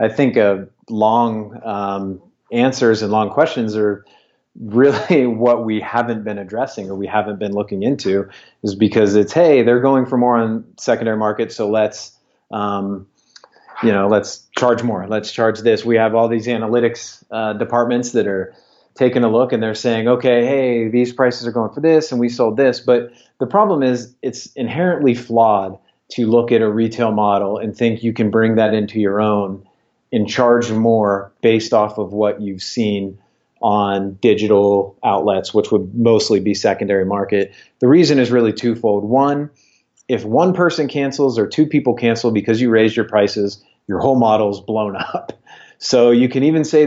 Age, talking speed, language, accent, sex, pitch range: 30-49, 180 wpm, English, American, male, 105-125 Hz